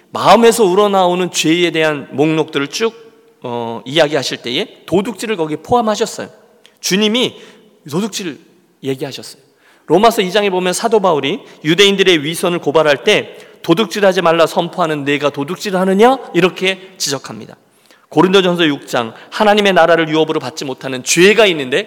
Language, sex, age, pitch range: Korean, male, 40-59, 165-225 Hz